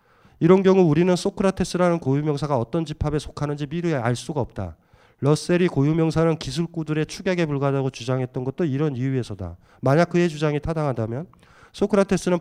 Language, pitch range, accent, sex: Korean, 135-190 Hz, native, male